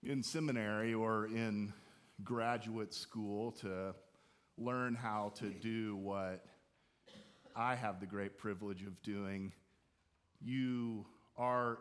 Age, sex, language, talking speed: 40-59, male, English, 105 wpm